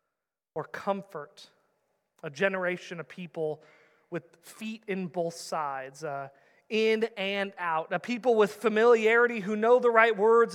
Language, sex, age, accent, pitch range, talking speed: English, male, 30-49, American, 180-255 Hz, 135 wpm